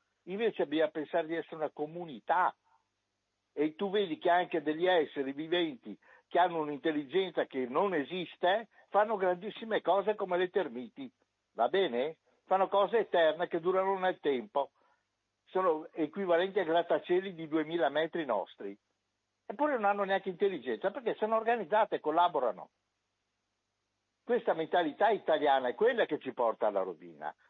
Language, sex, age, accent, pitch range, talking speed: Italian, male, 60-79, native, 145-210 Hz, 140 wpm